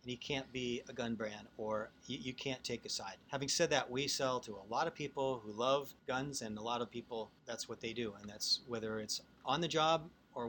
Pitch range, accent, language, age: 115-145 Hz, American, English, 40-59